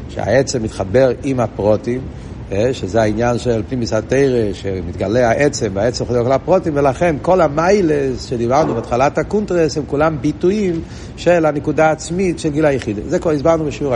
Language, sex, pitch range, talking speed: Hebrew, male, 115-155 Hz, 145 wpm